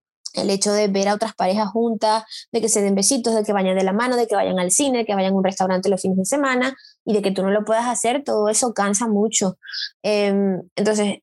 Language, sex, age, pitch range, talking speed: Spanish, female, 20-39, 200-240 Hz, 250 wpm